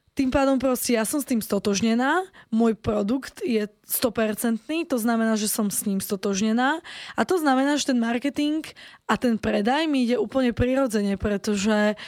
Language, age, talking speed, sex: Slovak, 20-39, 165 wpm, female